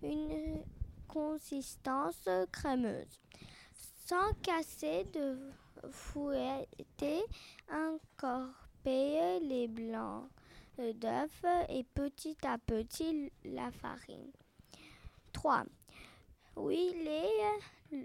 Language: French